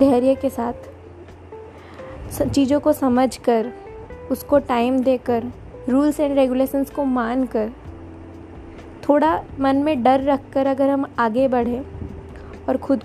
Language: Hindi